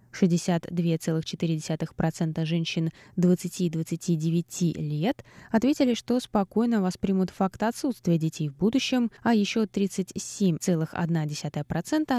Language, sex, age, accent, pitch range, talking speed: Russian, female, 20-39, native, 165-220 Hz, 85 wpm